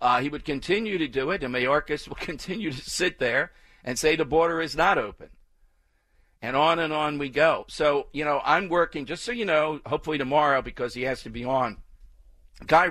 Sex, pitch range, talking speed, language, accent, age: male, 115-160 Hz, 210 wpm, English, American, 50-69